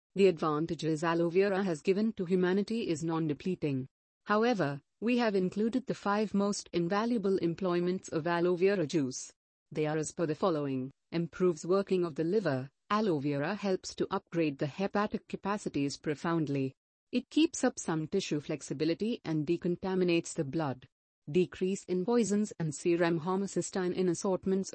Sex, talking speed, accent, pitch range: female, 150 wpm, Indian, 160-195 Hz